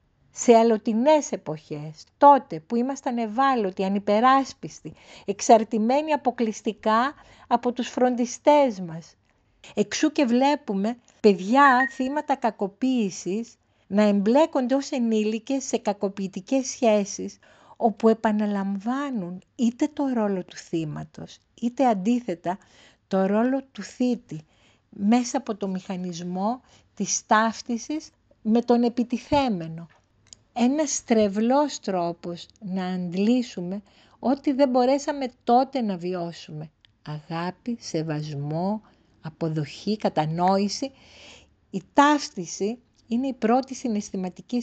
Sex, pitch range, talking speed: female, 185-255 Hz, 95 wpm